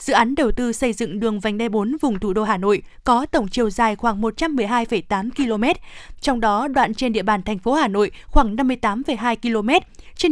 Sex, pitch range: female, 225-280 Hz